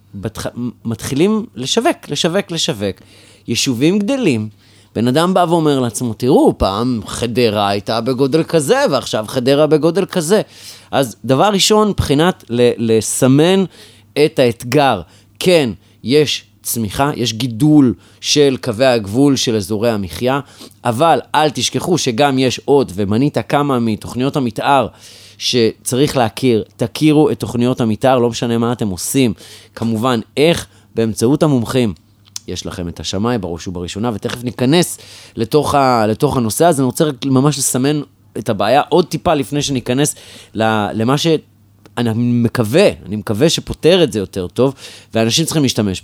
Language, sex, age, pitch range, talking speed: Hebrew, male, 30-49, 105-140 Hz, 135 wpm